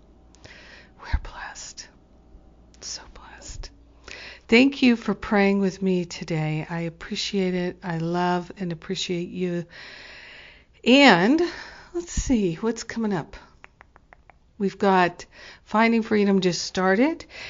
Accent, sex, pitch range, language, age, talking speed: American, female, 170-195 Hz, English, 50-69, 105 wpm